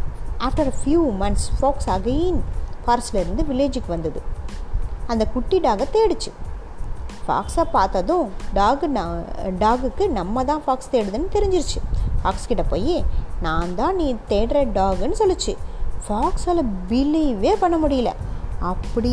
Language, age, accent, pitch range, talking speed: Tamil, 20-39, native, 220-305 Hz, 115 wpm